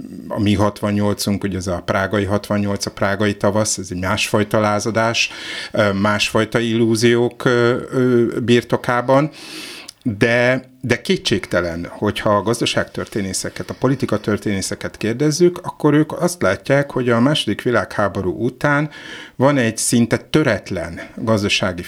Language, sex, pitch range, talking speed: Hungarian, male, 105-130 Hz, 110 wpm